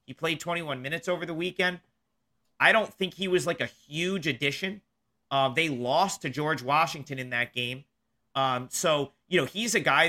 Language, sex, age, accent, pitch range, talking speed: English, male, 40-59, American, 145-185 Hz, 190 wpm